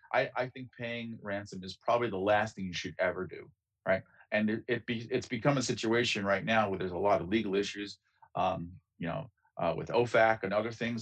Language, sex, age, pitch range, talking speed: English, male, 40-59, 105-125 Hz, 225 wpm